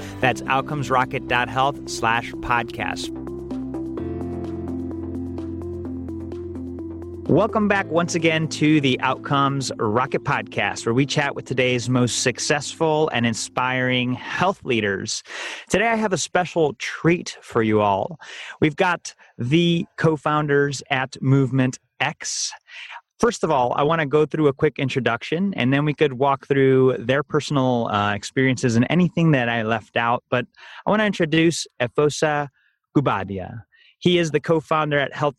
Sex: male